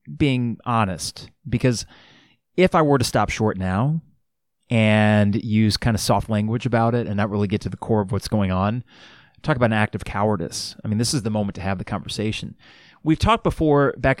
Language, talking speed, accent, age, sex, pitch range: English, 205 wpm, American, 30-49, male, 105-130 Hz